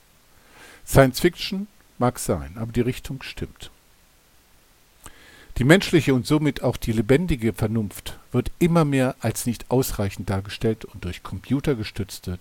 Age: 50-69